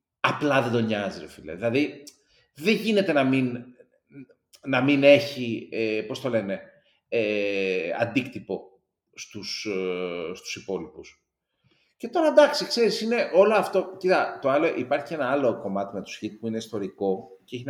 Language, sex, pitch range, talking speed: Greek, male, 115-190 Hz, 160 wpm